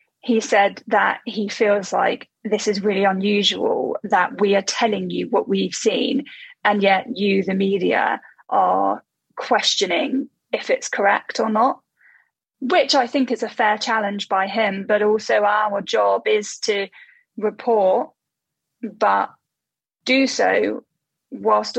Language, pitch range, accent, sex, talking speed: English, 195-240 Hz, British, female, 140 wpm